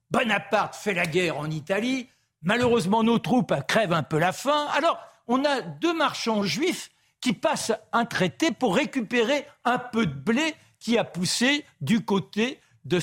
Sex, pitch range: male, 170-250 Hz